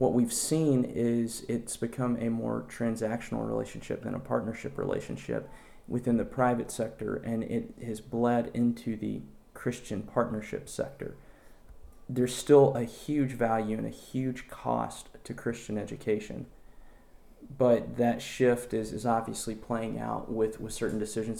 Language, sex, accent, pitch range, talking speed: English, male, American, 110-125 Hz, 145 wpm